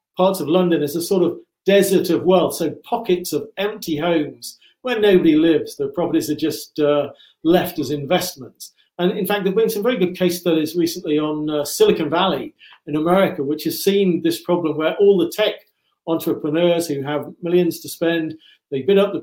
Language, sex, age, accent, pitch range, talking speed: English, male, 50-69, British, 155-195 Hz, 195 wpm